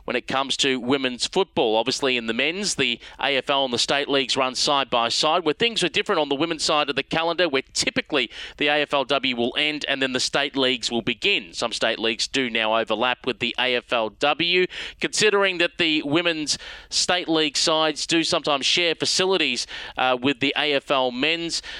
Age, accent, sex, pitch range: 30-49, Australian, male, 130-185 Hz